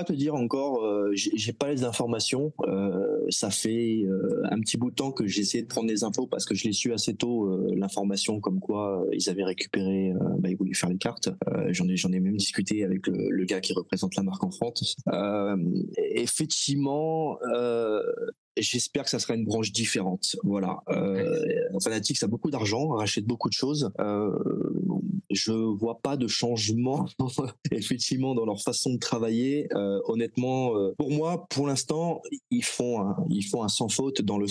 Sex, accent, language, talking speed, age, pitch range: male, French, French, 195 wpm, 20-39, 100-130 Hz